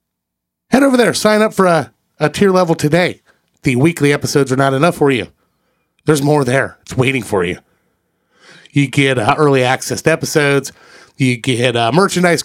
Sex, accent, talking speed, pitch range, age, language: male, American, 180 wpm, 120-170 Hz, 30-49, English